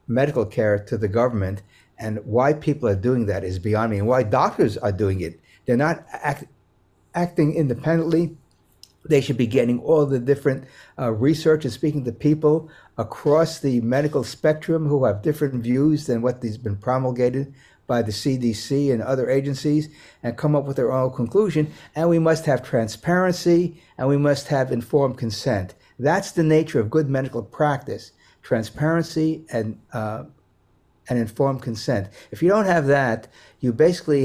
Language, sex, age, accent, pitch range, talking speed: English, male, 60-79, American, 115-150 Hz, 165 wpm